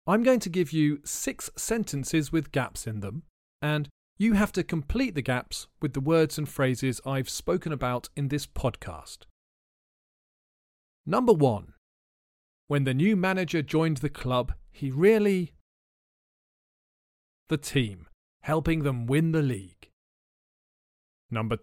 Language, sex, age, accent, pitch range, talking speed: English, male, 40-59, British, 115-175 Hz, 135 wpm